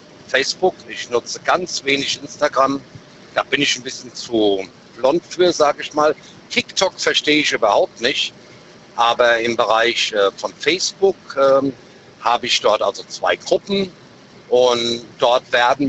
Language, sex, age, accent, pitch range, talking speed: German, male, 50-69, German, 120-160 Hz, 140 wpm